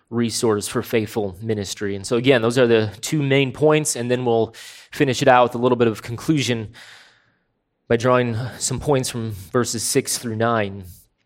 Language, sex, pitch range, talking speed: English, male, 120-145 Hz, 180 wpm